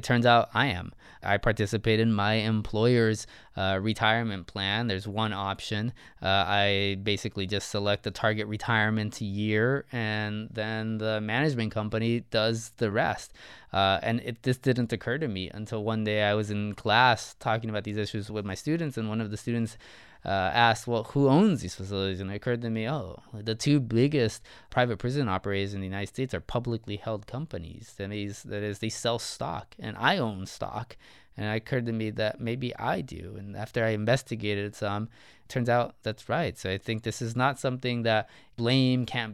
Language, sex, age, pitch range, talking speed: English, male, 20-39, 105-120 Hz, 190 wpm